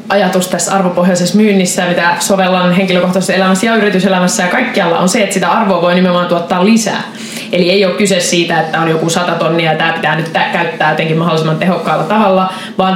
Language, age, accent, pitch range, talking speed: Finnish, 20-39, native, 175-200 Hz, 190 wpm